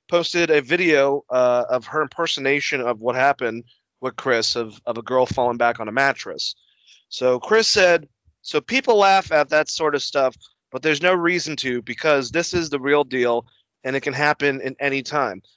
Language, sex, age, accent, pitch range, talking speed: English, male, 30-49, American, 135-170 Hz, 195 wpm